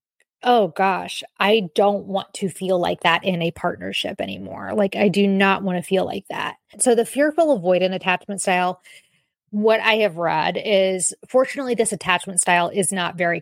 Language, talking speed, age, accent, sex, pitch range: English, 180 wpm, 20-39, American, female, 175-215 Hz